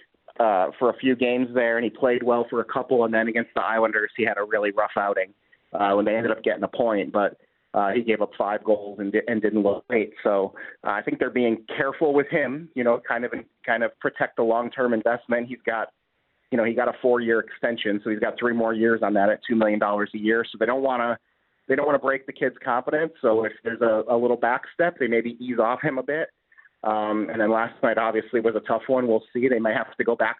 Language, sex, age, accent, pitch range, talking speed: English, male, 30-49, American, 110-125 Hz, 265 wpm